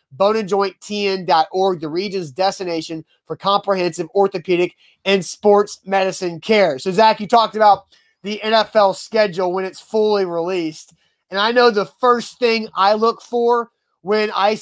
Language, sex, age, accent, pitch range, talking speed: English, male, 30-49, American, 190-230 Hz, 140 wpm